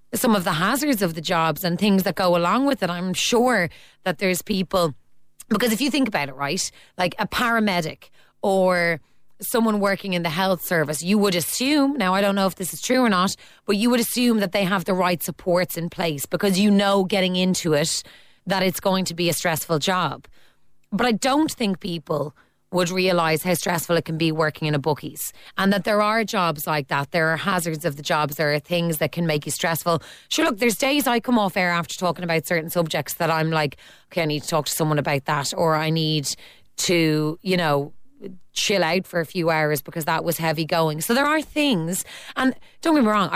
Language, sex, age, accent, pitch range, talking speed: English, female, 30-49, Irish, 160-205 Hz, 225 wpm